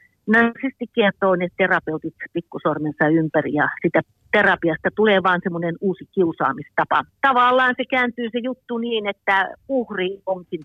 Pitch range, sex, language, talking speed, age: 155-215 Hz, female, Finnish, 130 wpm, 50-69